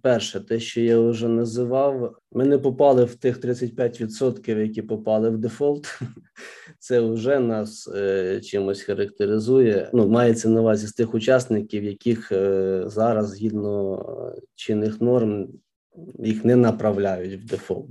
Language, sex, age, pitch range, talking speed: Ukrainian, male, 20-39, 105-120 Hz, 135 wpm